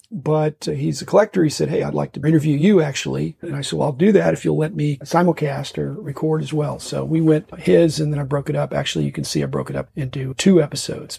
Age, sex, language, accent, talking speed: 40-59, male, English, American, 275 wpm